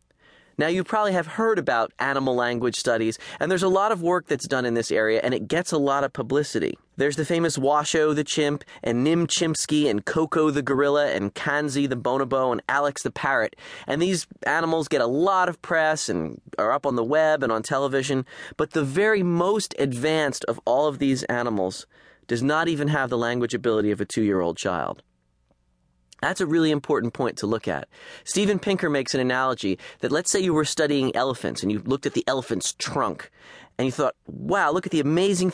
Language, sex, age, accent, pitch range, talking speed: English, male, 20-39, American, 120-165 Hz, 205 wpm